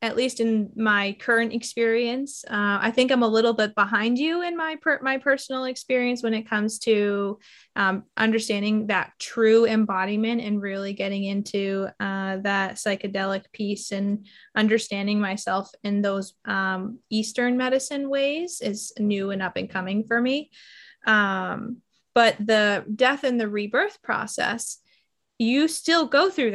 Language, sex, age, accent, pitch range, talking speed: English, female, 20-39, American, 205-260 Hz, 150 wpm